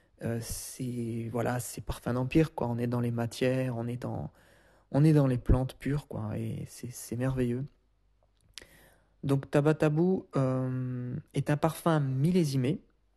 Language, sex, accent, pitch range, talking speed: French, male, French, 125-150 Hz, 150 wpm